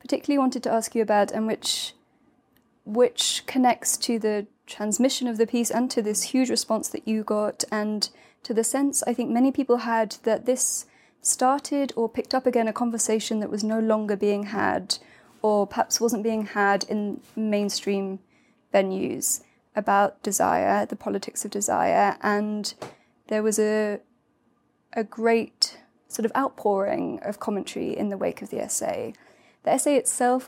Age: 20-39